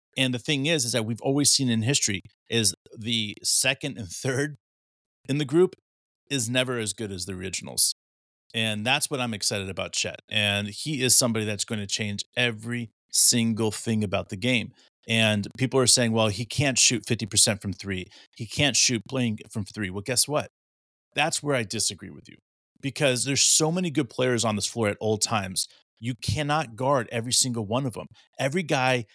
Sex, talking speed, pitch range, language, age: male, 195 wpm, 110-140 Hz, English, 30-49